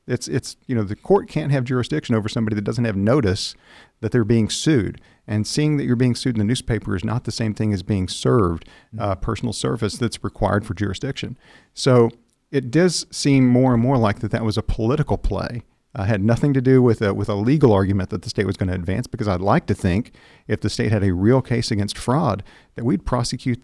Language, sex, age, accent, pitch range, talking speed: English, male, 50-69, American, 105-125 Hz, 235 wpm